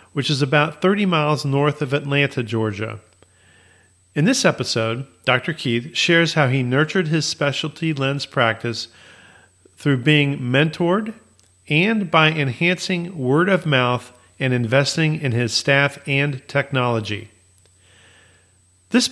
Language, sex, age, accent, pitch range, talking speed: English, male, 40-59, American, 115-155 Hz, 120 wpm